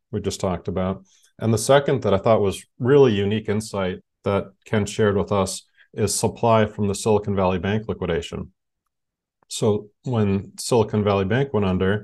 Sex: male